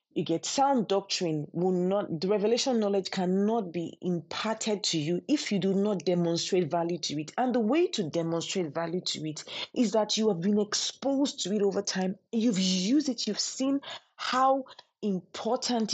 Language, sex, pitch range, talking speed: English, female, 180-235 Hz, 175 wpm